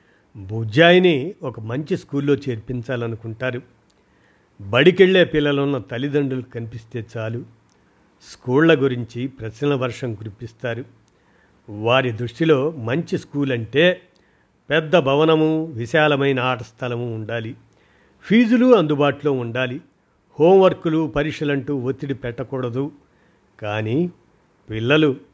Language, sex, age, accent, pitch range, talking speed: Telugu, male, 50-69, native, 125-155 Hz, 85 wpm